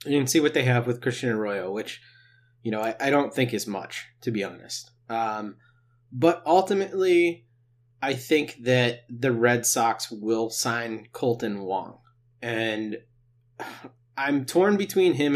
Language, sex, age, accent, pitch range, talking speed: English, male, 30-49, American, 115-130 Hz, 150 wpm